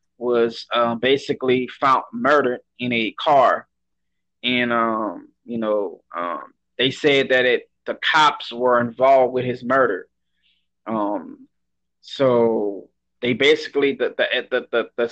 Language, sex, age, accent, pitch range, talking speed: English, male, 20-39, American, 120-140 Hz, 130 wpm